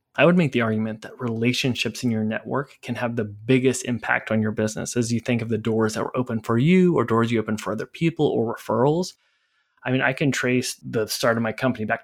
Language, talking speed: English, 245 wpm